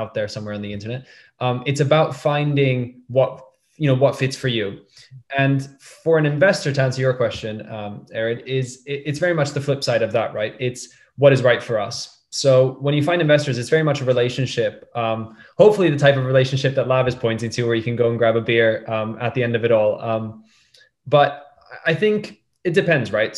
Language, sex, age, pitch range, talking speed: English, male, 20-39, 115-140 Hz, 225 wpm